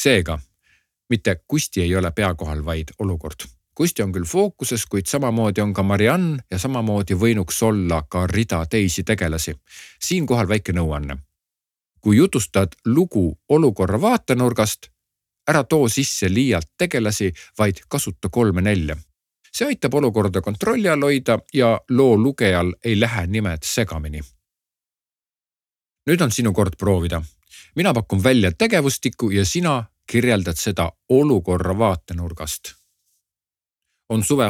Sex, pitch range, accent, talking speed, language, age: male, 90-120 Hz, Finnish, 125 wpm, Czech, 50-69